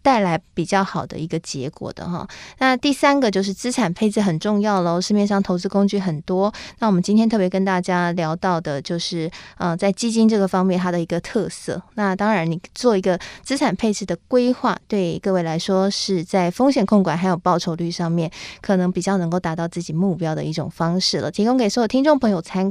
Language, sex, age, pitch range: Chinese, female, 20-39, 180-230 Hz